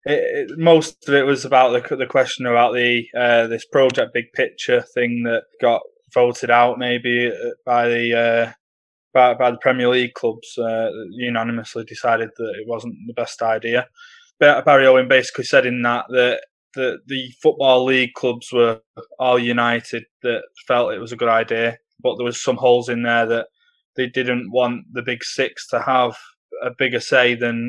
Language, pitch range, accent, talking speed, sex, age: English, 115-130 Hz, British, 180 wpm, male, 20-39